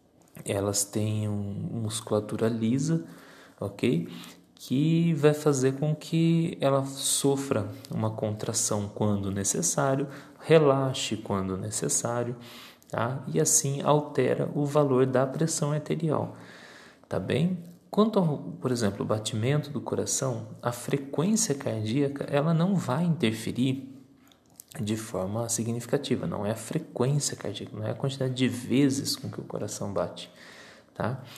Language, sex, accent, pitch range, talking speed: Portuguese, male, Brazilian, 105-145 Hz, 125 wpm